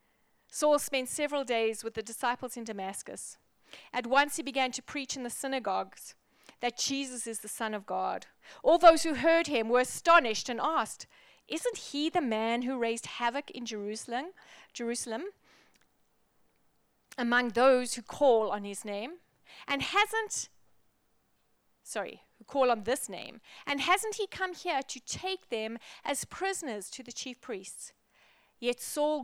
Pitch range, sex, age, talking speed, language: 225-280 Hz, female, 30-49, 155 wpm, English